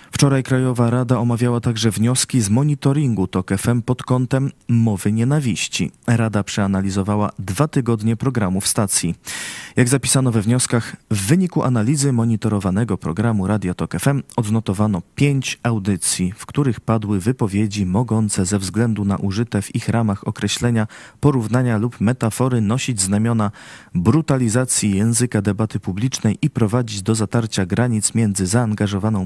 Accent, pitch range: native, 100-125 Hz